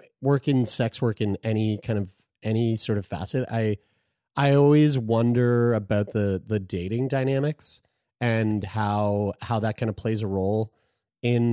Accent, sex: American, male